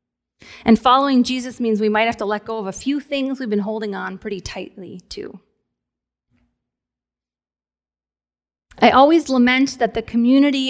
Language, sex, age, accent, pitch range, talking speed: English, female, 30-49, American, 195-245 Hz, 150 wpm